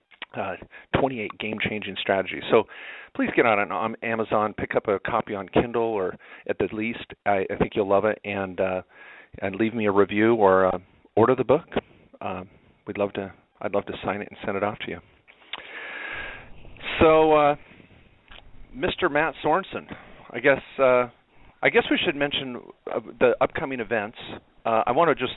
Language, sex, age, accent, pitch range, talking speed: English, male, 40-59, American, 100-120 Hz, 175 wpm